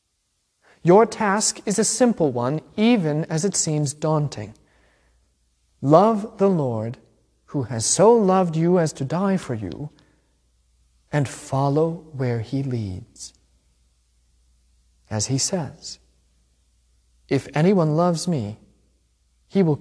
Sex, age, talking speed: male, 40-59, 115 wpm